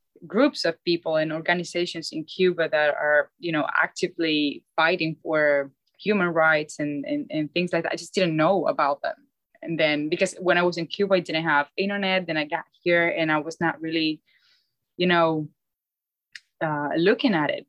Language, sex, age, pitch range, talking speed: English, female, 20-39, 155-185 Hz, 185 wpm